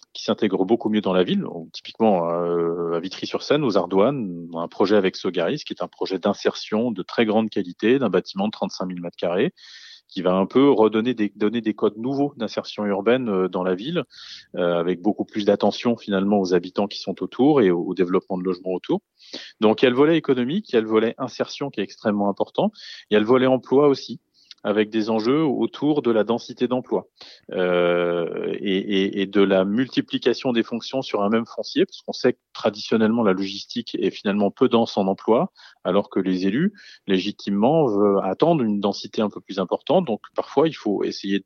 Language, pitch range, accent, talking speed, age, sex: French, 95-125 Hz, French, 200 wpm, 30-49, male